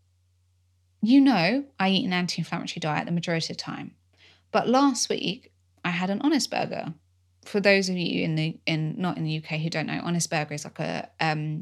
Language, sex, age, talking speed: English, female, 20-39, 210 wpm